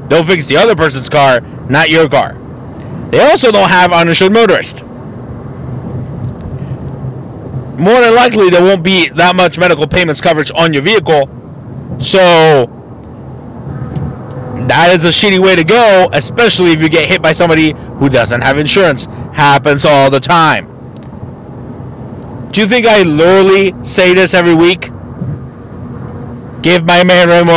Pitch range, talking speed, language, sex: 130-185 Hz, 140 wpm, English, male